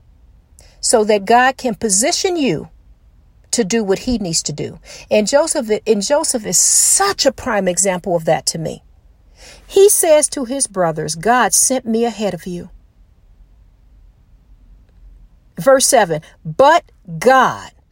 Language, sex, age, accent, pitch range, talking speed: English, female, 50-69, American, 175-275 Hz, 135 wpm